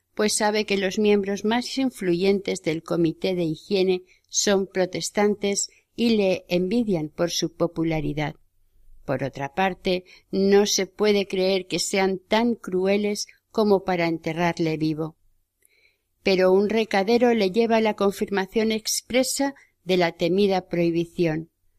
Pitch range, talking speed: 170-215 Hz, 125 wpm